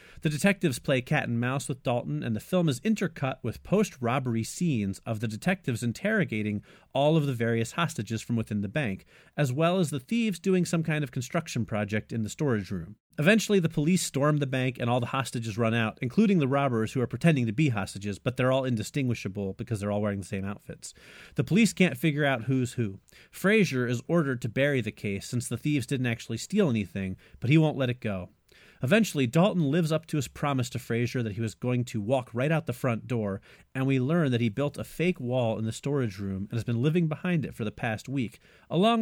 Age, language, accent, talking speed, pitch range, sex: 40-59, English, American, 225 wpm, 110-155 Hz, male